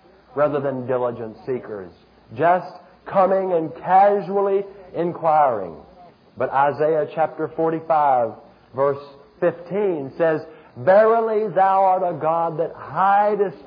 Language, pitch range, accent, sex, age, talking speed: English, 150-210 Hz, American, male, 50-69, 100 wpm